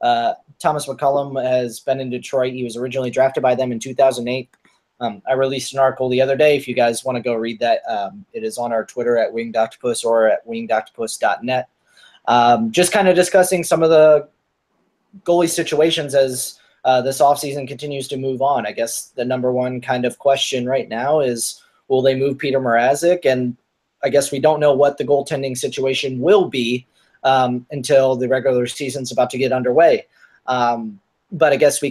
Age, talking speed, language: 20-39, 190 wpm, English